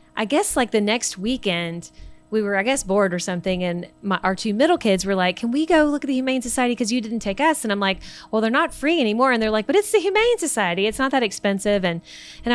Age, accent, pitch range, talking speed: 30-49, American, 180-235 Hz, 270 wpm